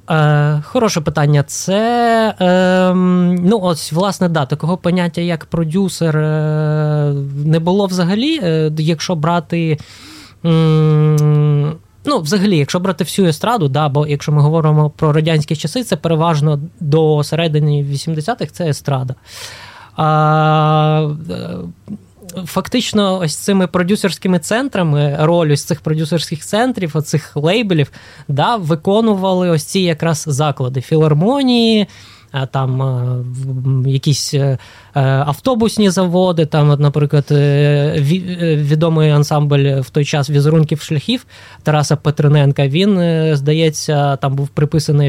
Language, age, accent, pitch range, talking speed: Ukrainian, 20-39, native, 145-180 Hz, 110 wpm